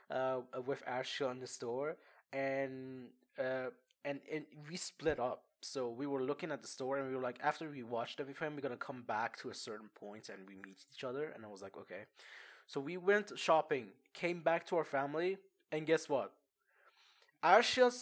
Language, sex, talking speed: English, male, 195 wpm